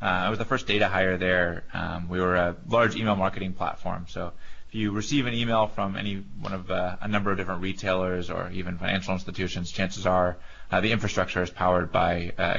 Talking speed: 215 wpm